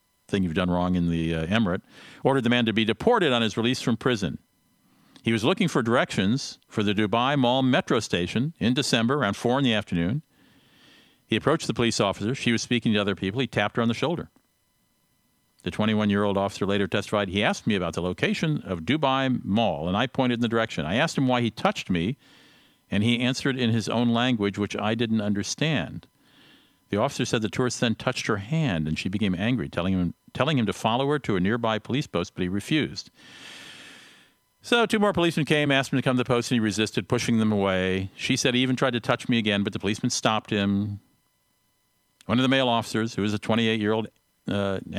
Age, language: 50-69, English